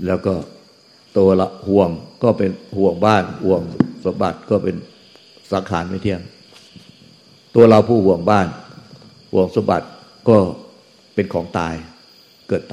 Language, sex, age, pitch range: Thai, male, 60-79, 90-105 Hz